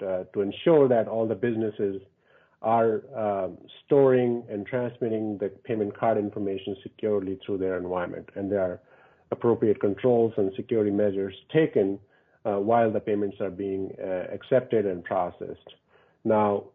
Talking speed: 145 wpm